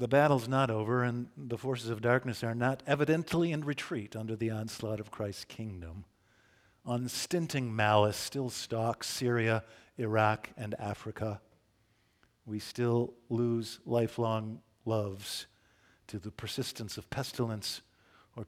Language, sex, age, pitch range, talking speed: English, male, 50-69, 105-115 Hz, 125 wpm